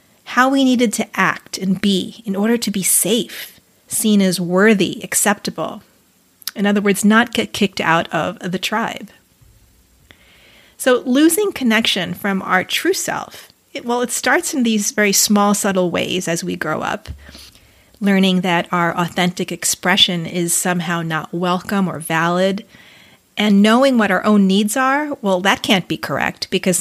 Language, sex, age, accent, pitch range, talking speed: English, female, 30-49, American, 180-220 Hz, 155 wpm